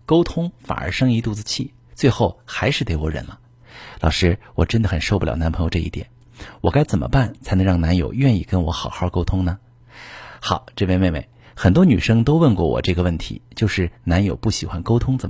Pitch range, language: 90-120 Hz, Chinese